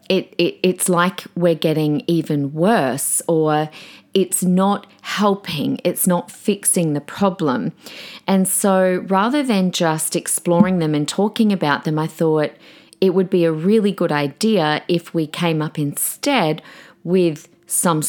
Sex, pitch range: female, 155-190 Hz